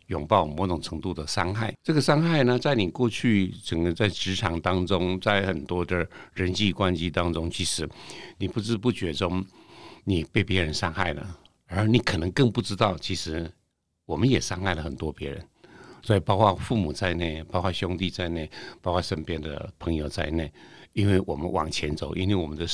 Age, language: 60-79, Chinese